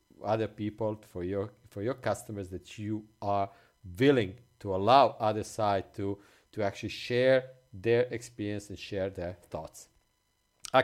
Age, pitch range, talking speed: 50-69, 100-135 Hz, 145 wpm